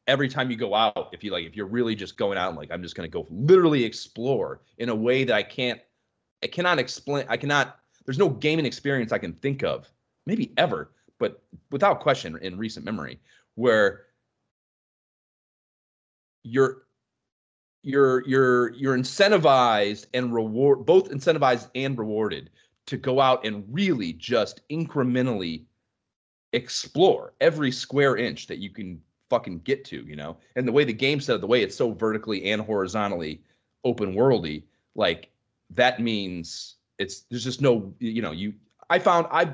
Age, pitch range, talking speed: 30-49, 105-140 Hz, 165 wpm